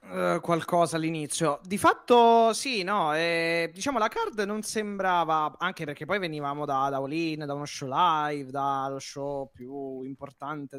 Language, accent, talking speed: Italian, native, 155 wpm